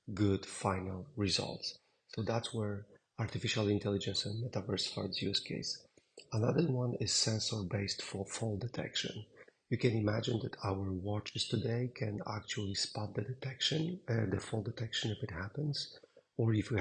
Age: 40-59